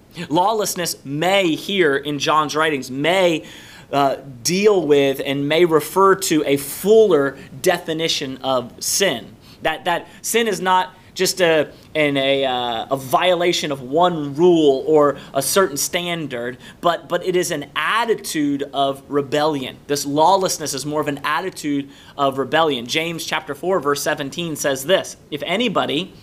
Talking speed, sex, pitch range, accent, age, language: 145 wpm, male, 145-195 Hz, American, 30-49, English